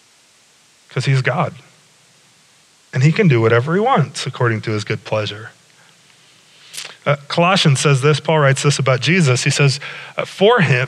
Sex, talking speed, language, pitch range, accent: male, 155 wpm, English, 135-165 Hz, American